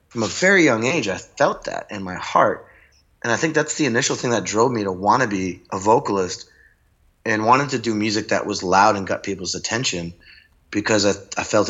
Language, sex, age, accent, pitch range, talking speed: English, male, 30-49, American, 90-110 Hz, 220 wpm